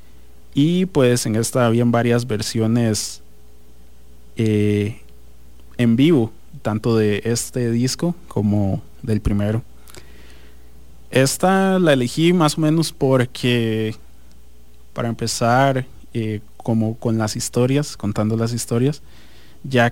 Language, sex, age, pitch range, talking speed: English, male, 30-49, 105-130 Hz, 105 wpm